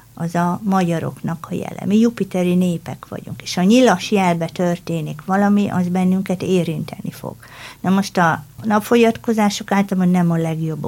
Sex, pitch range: female, 175-215 Hz